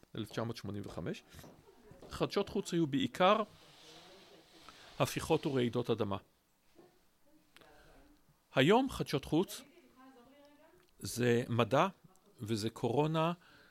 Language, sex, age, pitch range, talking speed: Hebrew, male, 50-69, 115-160 Hz, 65 wpm